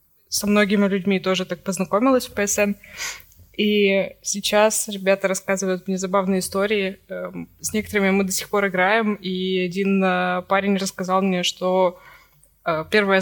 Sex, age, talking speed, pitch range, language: female, 20-39, 130 wpm, 185-220 Hz, Russian